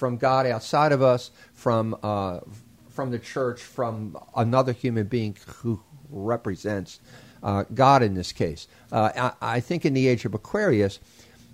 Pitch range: 105-125 Hz